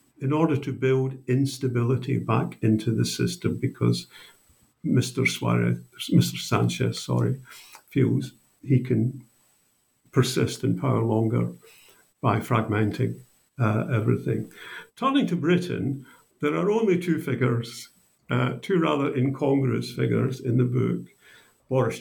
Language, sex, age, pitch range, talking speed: English, male, 60-79, 115-145 Hz, 115 wpm